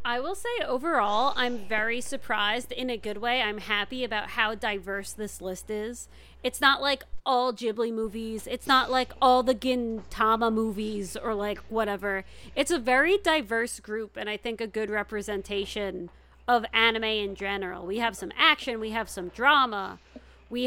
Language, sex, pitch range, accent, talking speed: English, female, 215-270 Hz, American, 170 wpm